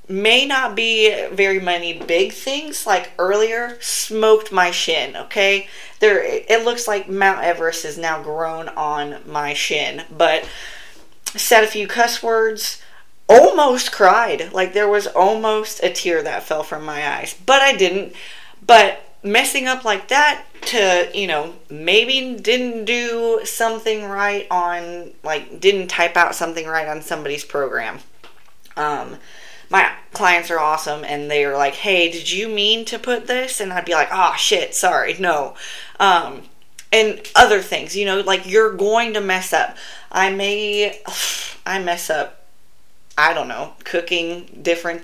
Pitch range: 170-225 Hz